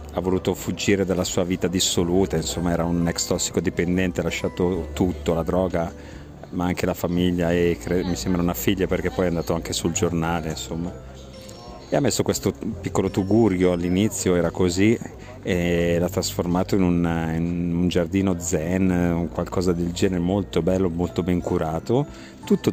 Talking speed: 165 wpm